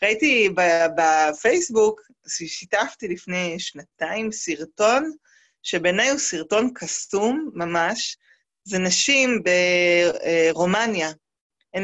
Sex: female